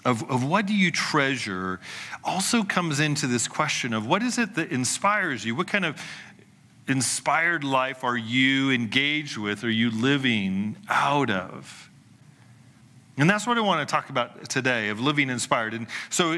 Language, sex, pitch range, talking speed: English, male, 115-150 Hz, 170 wpm